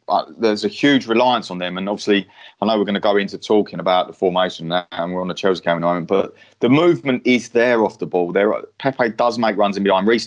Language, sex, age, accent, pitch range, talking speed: English, male, 30-49, British, 100-125 Hz, 270 wpm